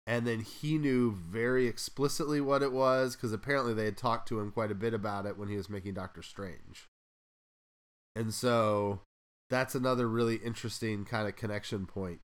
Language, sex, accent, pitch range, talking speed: English, male, American, 105-135 Hz, 180 wpm